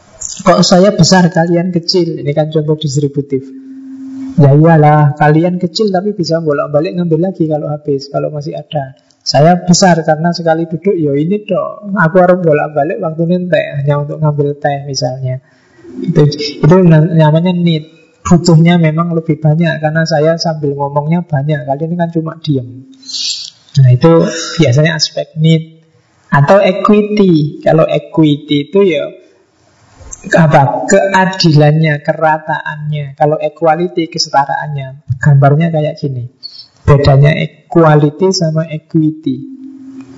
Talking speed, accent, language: 125 wpm, native, Indonesian